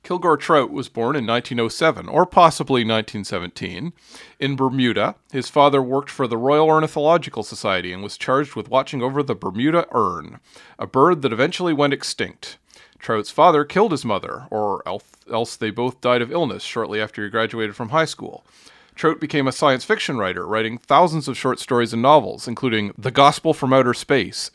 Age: 40-59